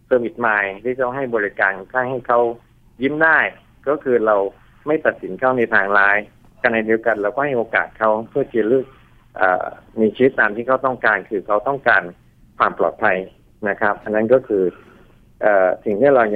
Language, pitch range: Thai, 105-130 Hz